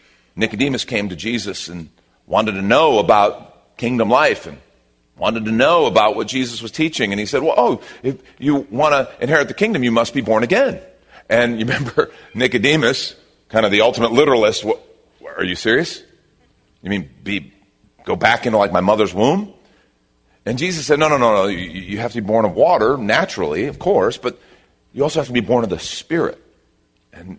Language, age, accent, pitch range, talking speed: English, 40-59, American, 70-120 Hz, 195 wpm